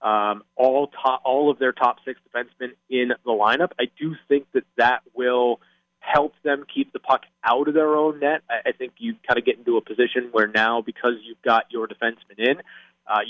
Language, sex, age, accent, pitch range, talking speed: English, male, 30-49, American, 120-140 Hz, 210 wpm